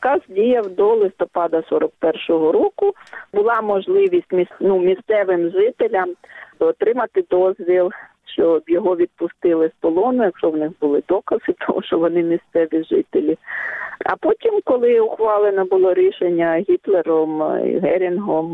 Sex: female